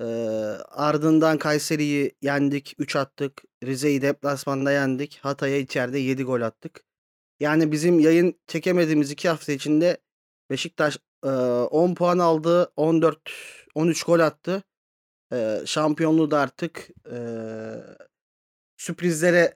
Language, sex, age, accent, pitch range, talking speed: Turkish, male, 40-59, native, 140-165 Hz, 105 wpm